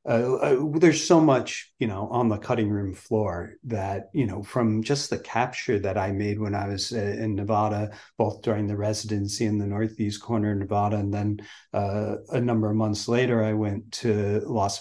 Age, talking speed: 40-59, 200 wpm